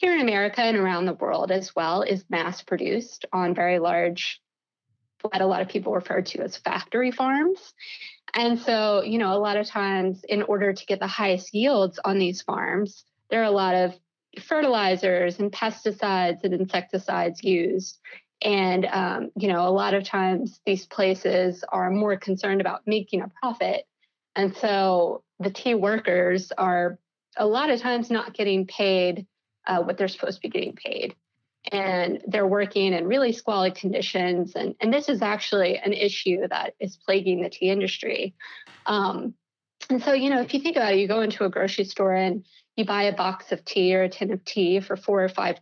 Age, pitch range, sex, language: 20-39, 185-215 Hz, female, English